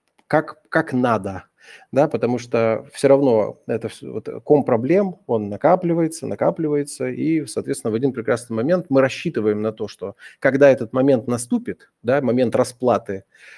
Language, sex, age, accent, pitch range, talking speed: Russian, male, 30-49, native, 110-150 Hz, 135 wpm